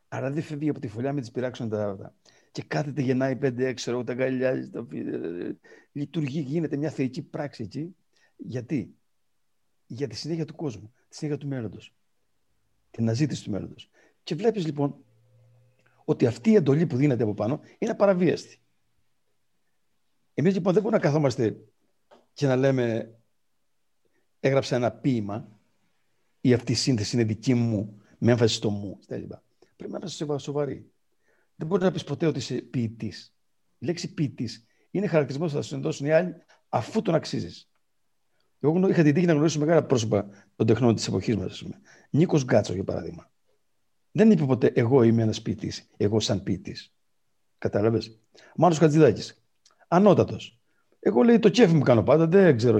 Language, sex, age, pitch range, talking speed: Greek, male, 60-79, 115-155 Hz, 160 wpm